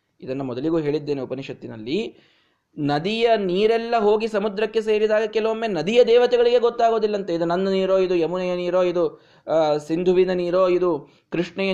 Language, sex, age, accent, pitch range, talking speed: Kannada, male, 20-39, native, 150-225 Hz, 130 wpm